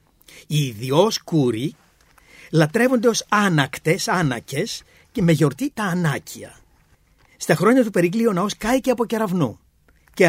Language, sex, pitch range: Greek, male, 135-195 Hz